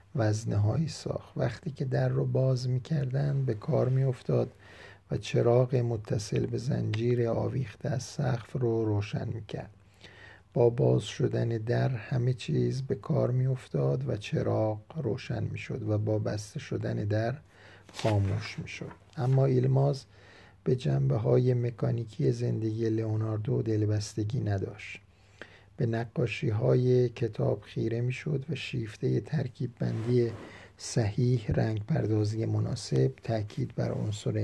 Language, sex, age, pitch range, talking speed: Persian, male, 50-69, 105-130 Hz, 125 wpm